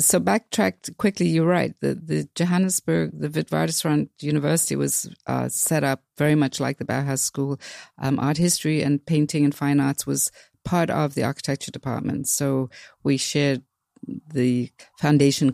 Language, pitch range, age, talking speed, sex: English, 125-150 Hz, 50-69, 155 wpm, female